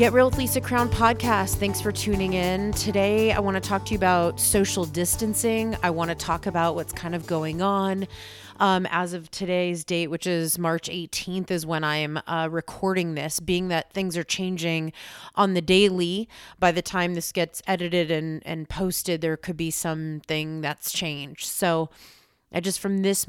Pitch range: 165-190 Hz